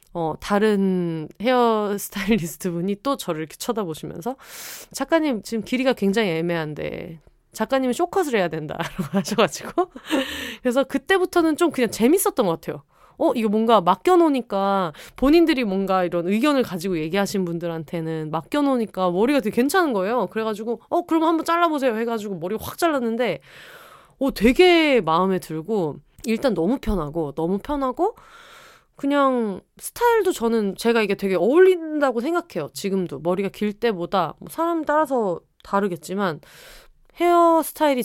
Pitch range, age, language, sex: 180-275 Hz, 20-39, Korean, female